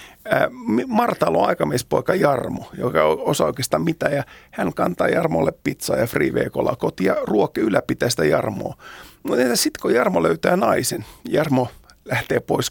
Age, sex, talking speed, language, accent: 50-69, male, 145 wpm, Finnish, native